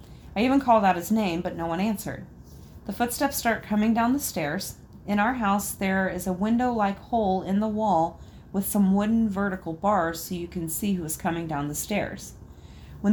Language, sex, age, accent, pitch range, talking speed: English, female, 30-49, American, 175-220 Hz, 195 wpm